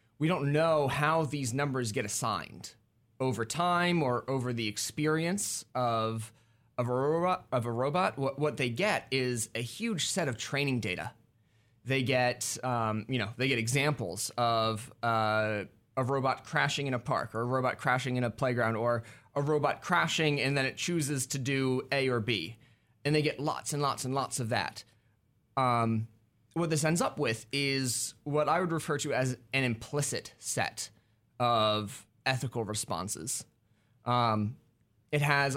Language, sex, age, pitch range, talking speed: English, male, 30-49, 115-145 Hz, 170 wpm